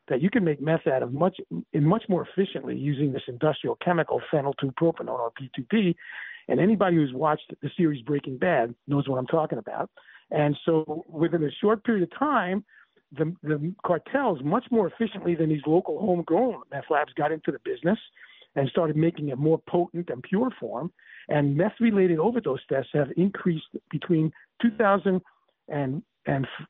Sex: male